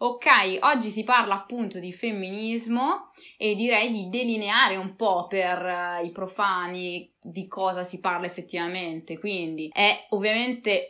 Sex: female